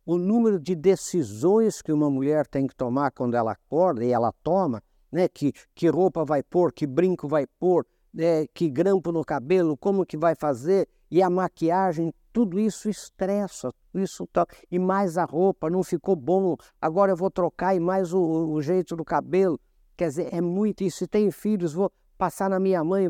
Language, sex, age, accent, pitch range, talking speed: Portuguese, male, 60-79, Brazilian, 135-190 Hz, 190 wpm